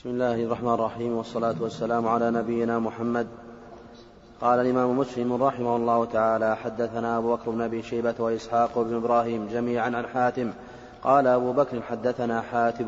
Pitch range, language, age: 115-125 Hz, Arabic, 30-49